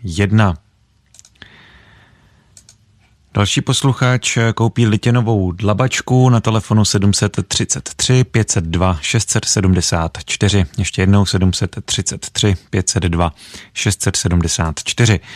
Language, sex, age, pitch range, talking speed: Czech, male, 30-49, 95-115 Hz, 50 wpm